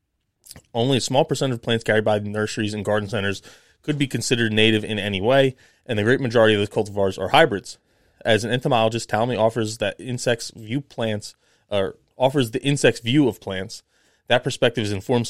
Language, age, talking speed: English, 20-39, 190 wpm